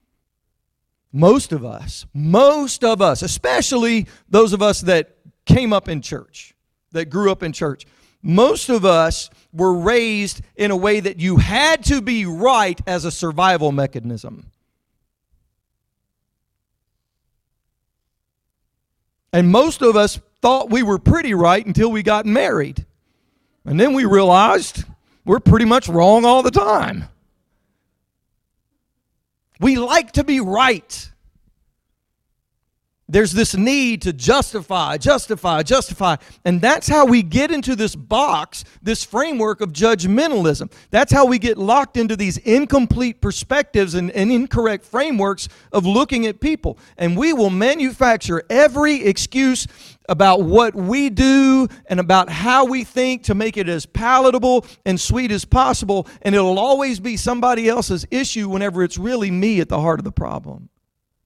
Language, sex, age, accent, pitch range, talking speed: English, male, 40-59, American, 180-250 Hz, 140 wpm